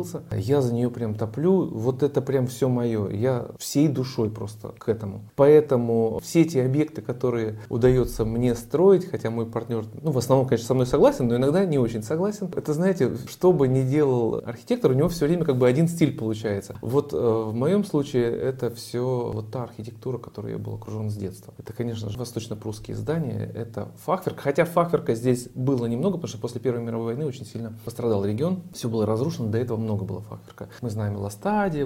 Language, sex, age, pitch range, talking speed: Russian, male, 30-49, 115-160 Hz, 195 wpm